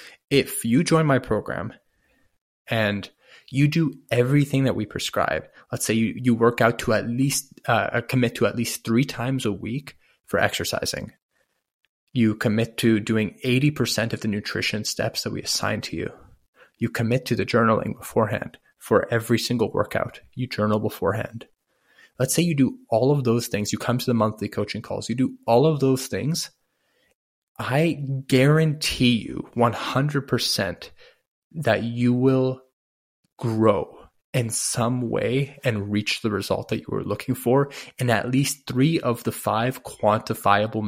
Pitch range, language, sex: 110-130 Hz, English, male